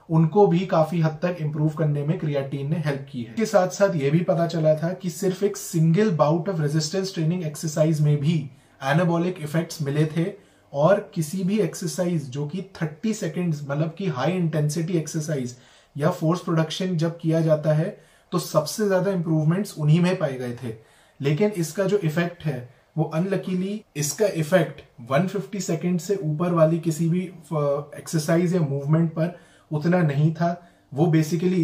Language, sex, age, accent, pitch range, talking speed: Hindi, male, 30-49, native, 150-180 Hz, 110 wpm